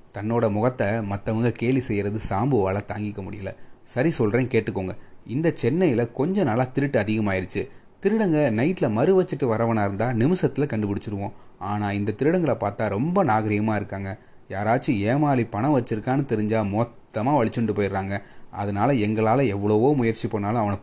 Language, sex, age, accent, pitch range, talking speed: Tamil, male, 30-49, native, 105-125 Hz, 135 wpm